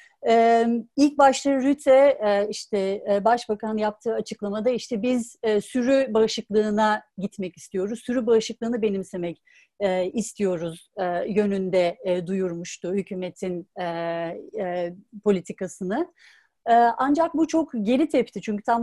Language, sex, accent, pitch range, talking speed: Turkish, female, native, 200-270 Hz, 90 wpm